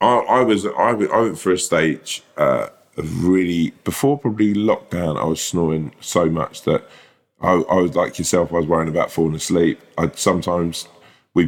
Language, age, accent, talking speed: English, 20-39, British, 170 wpm